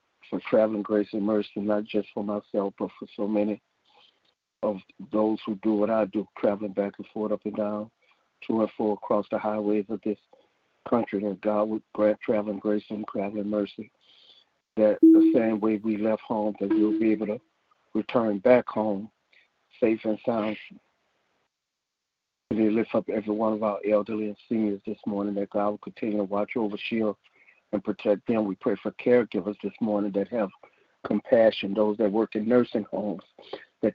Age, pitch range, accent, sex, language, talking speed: 60-79, 105-110 Hz, American, male, English, 180 wpm